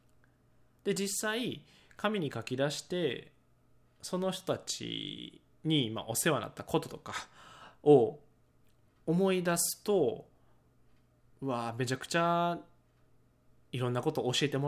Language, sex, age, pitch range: Japanese, male, 20-39, 120-160 Hz